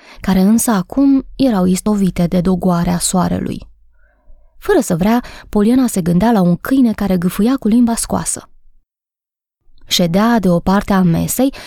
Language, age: Romanian, 20-39